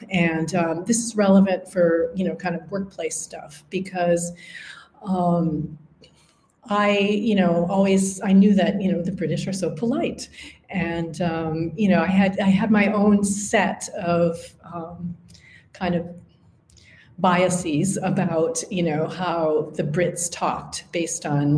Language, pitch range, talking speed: English, 170-200 Hz, 145 wpm